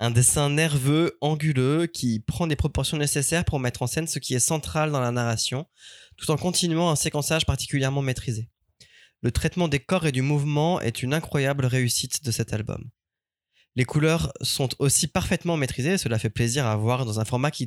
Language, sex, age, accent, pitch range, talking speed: French, male, 20-39, French, 120-155 Hz, 190 wpm